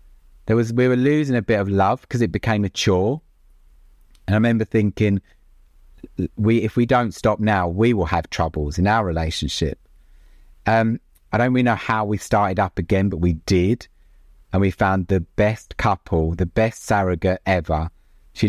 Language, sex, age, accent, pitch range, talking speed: English, male, 30-49, British, 90-115 Hz, 180 wpm